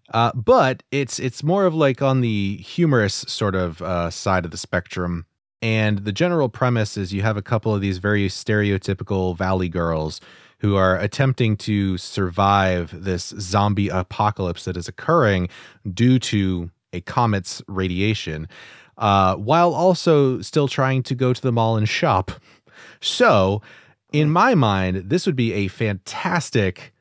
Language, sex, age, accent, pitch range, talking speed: English, male, 30-49, American, 95-125 Hz, 155 wpm